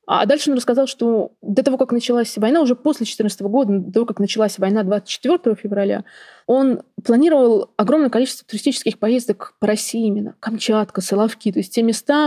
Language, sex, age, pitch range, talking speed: Russian, female, 20-39, 200-245 Hz, 175 wpm